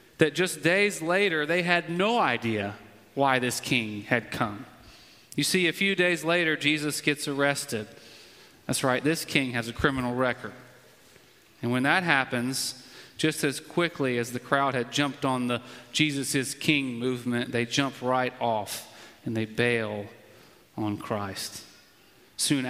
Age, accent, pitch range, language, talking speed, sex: 30-49, American, 120-150 Hz, English, 155 wpm, male